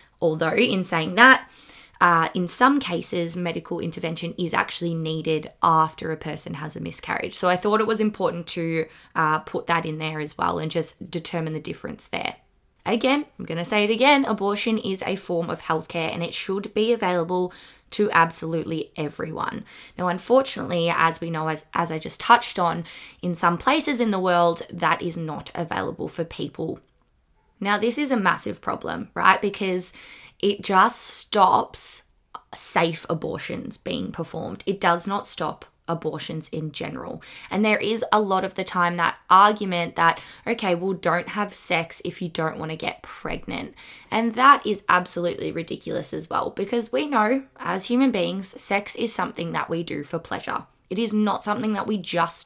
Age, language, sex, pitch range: 20-39, English, female, 165-215 Hz